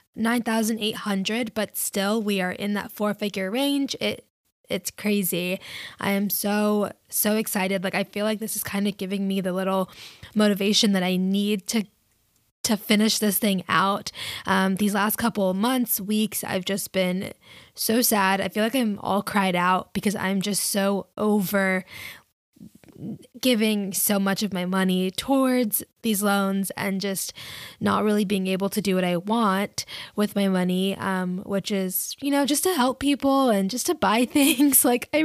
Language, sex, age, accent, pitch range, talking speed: English, female, 10-29, American, 195-225 Hz, 180 wpm